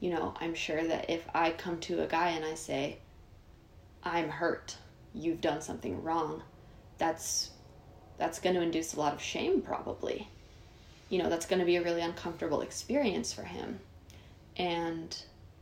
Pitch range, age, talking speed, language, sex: 115-180 Hz, 20-39, 165 wpm, English, female